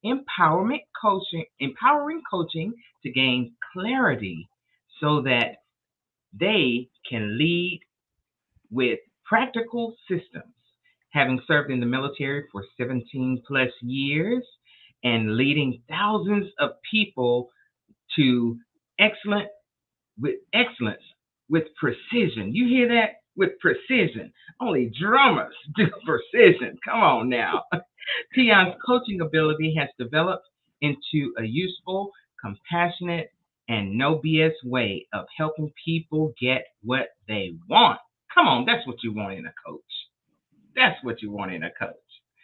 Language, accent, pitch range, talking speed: English, American, 125-205 Hz, 115 wpm